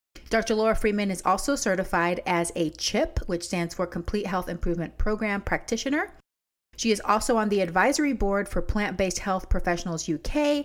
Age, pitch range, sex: 30-49, 185-245 Hz, female